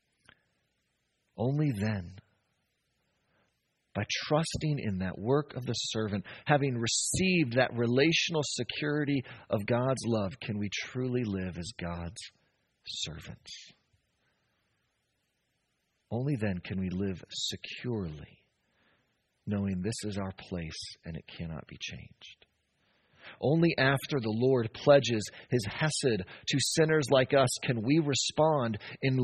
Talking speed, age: 115 wpm, 40-59